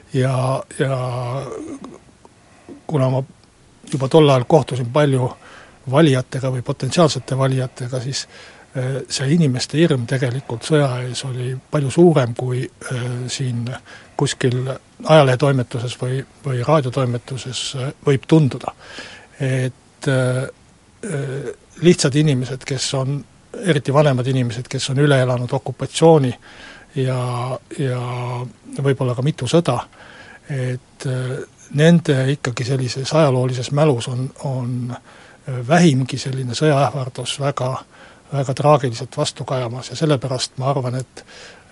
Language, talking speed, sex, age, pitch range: Finnish, 105 wpm, male, 60-79, 125-145 Hz